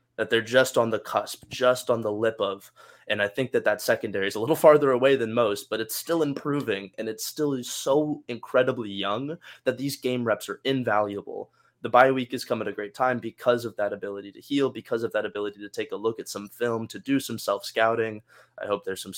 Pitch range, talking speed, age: 105-130 Hz, 235 wpm, 20-39